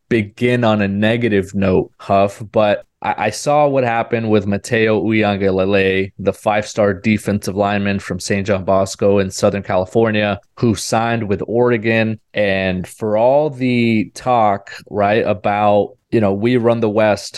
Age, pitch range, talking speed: 20-39, 100-120 Hz, 150 wpm